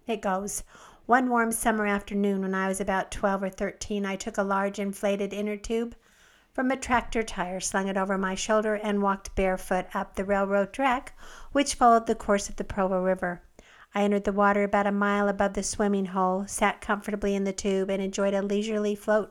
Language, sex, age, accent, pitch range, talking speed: English, female, 50-69, American, 195-220 Hz, 200 wpm